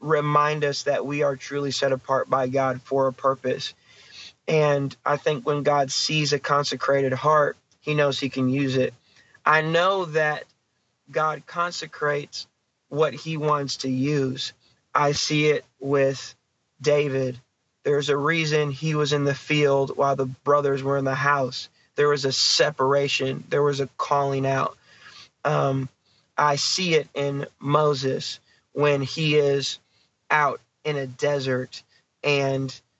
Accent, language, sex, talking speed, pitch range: American, English, male, 145 wpm, 130-145 Hz